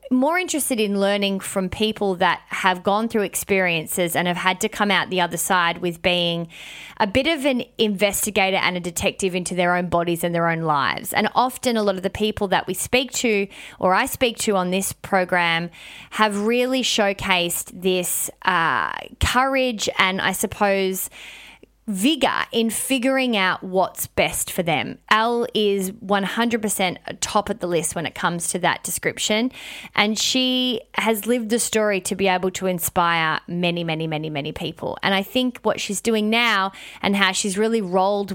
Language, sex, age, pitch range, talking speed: English, female, 20-39, 185-230 Hz, 180 wpm